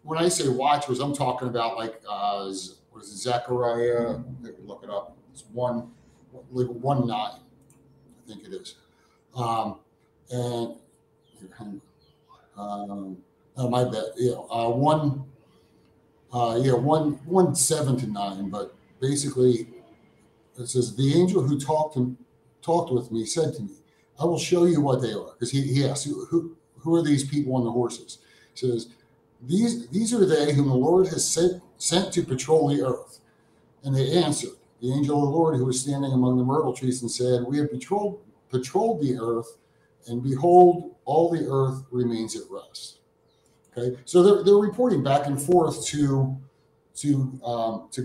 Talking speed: 165 wpm